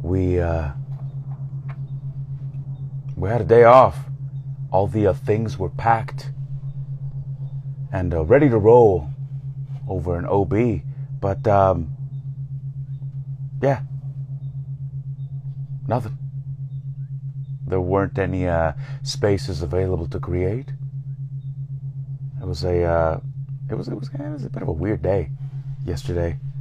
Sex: male